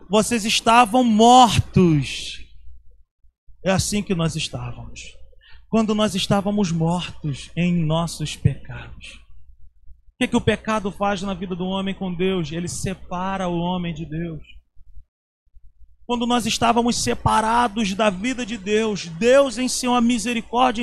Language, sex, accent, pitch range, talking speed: Portuguese, male, Brazilian, 150-235 Hz, 130 wpm